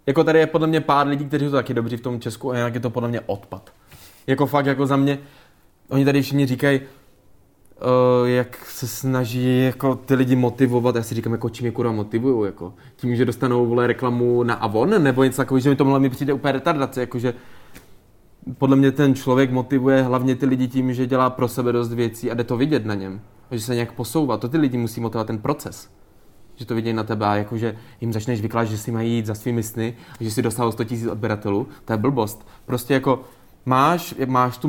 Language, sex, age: Czech, male, 20-39